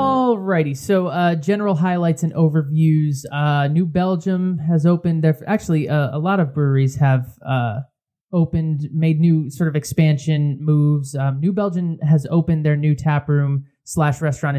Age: 20-39